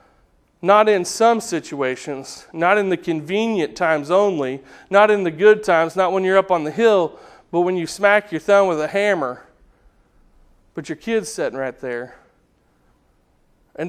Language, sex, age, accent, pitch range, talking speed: English, male, 40-59, American, 155-195 Hz, 165 wpm